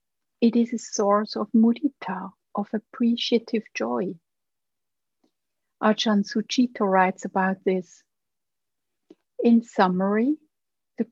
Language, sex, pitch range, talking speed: English, female, 200-255 Hz, 90 wpm